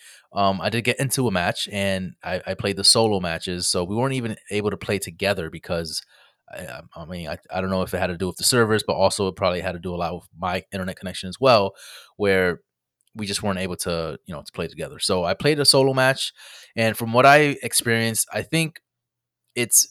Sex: male